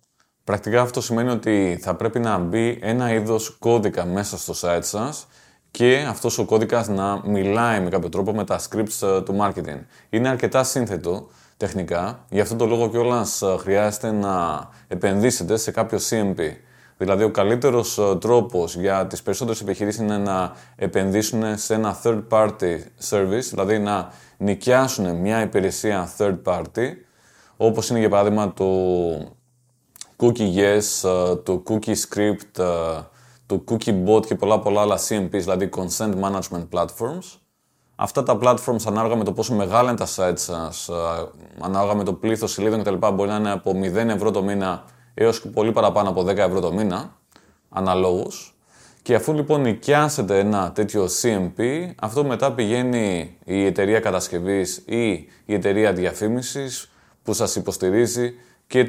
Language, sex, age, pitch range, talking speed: Greek, male, 20-39, 95-115 Hz, 150 wpm